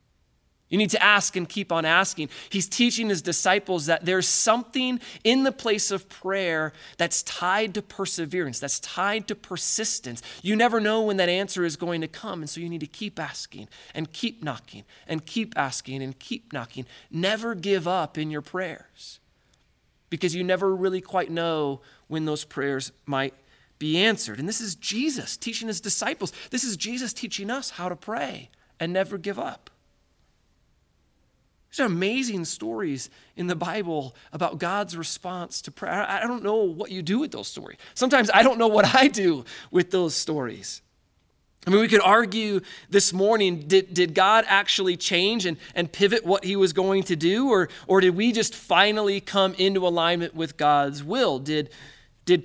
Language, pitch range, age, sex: English, 160-210 Hz, 20-39, male